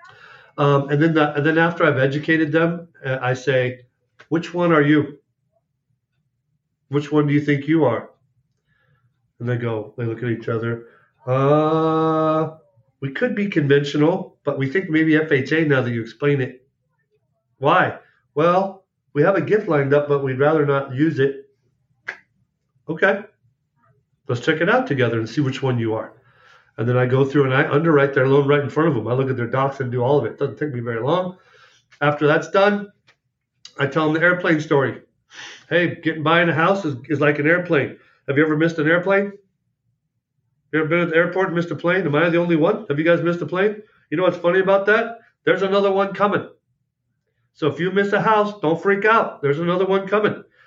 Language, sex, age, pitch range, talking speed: English, male, 40-59, 135-170 Hz, 205 wpm